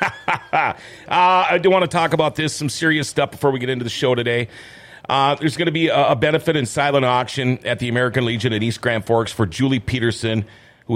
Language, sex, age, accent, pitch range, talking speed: English, male, 40-59, American, 115-140 Hz, 225 wpm